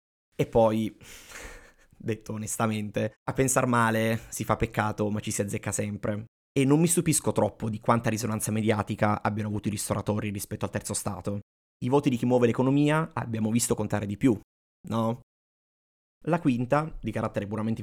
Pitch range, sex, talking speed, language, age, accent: 105-125 Hz, male, 165 wpm, Italian, 20-39, native